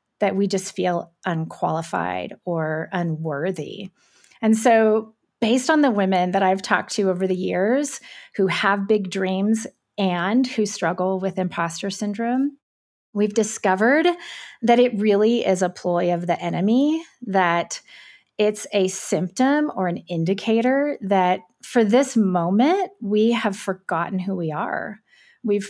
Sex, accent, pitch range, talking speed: female, American, 180-225 Hz, 140 wpm